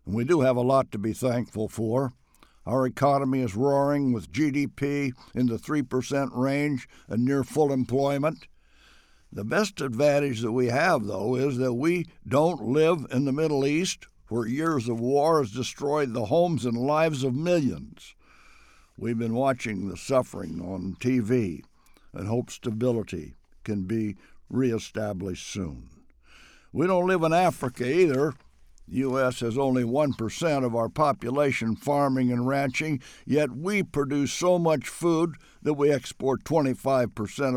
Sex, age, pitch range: male, 60-79, 115-145 Hz